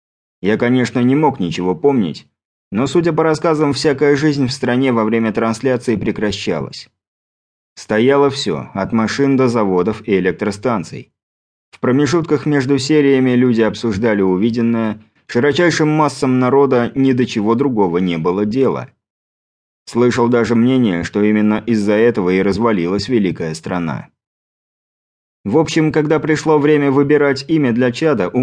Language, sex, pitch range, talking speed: Croatian, male, 105-140 Hz, 135 wpm